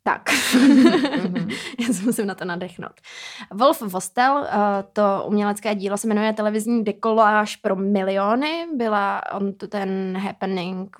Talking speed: 120 wpm